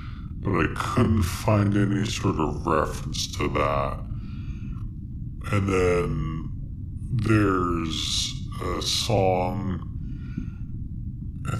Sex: female